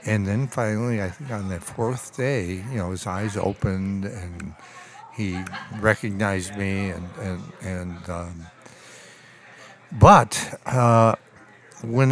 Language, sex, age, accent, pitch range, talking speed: English, male, 60-79, American, 100-130 Hz, 125 wpm